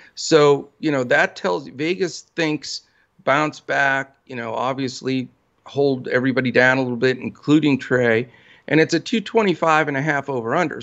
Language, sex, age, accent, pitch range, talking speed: English, male, 50-69, American, 125-150 Hz, 160 wpm